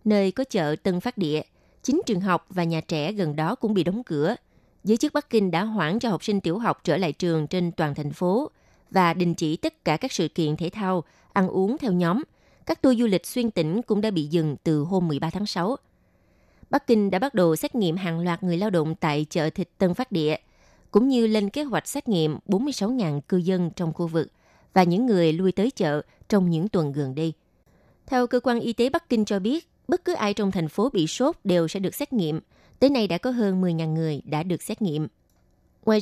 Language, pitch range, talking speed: Vietnamese, 170-235 Hz, 235 wpm